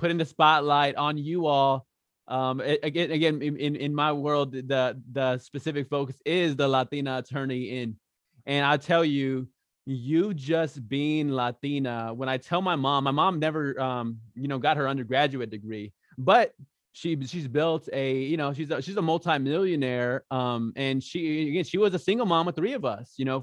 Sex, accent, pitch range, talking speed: male, American, 130-155 Hz, 185 wpm